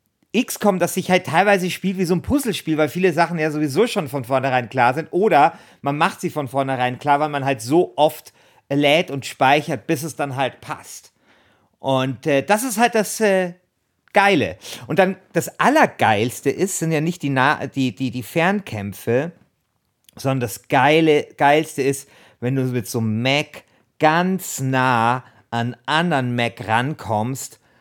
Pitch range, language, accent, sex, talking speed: 130-165 Hz, German, German, male, 175 wpm